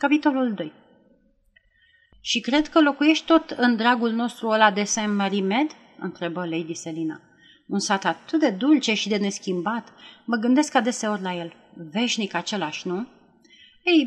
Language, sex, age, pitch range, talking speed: Romanian, female, 30-49, 180-245 Hz, 140 wpm